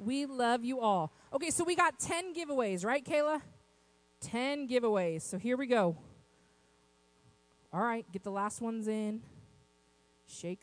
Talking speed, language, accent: 145 wpm, English, American